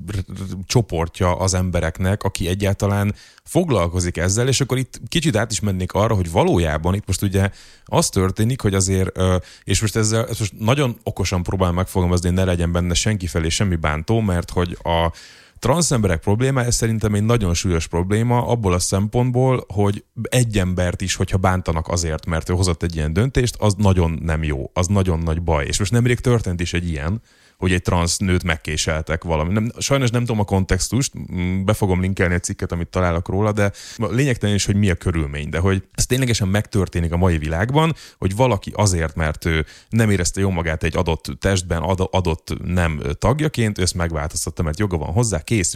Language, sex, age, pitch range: Hungarian, male, 30-49, 85-110 Hz